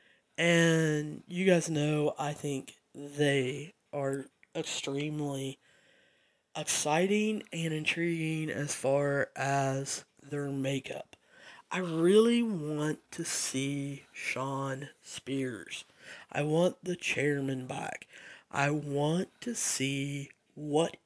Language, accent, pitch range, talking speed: English, American, 135-160 Hz, 95 wpm